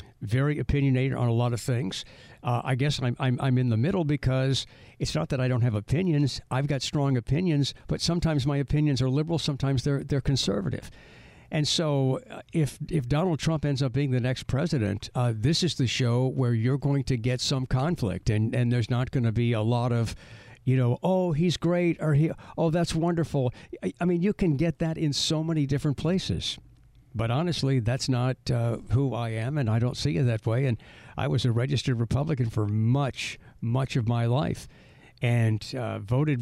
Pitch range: 120-145 Hz